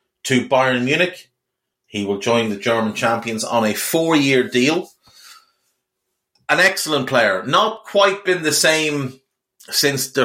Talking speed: 135 wpm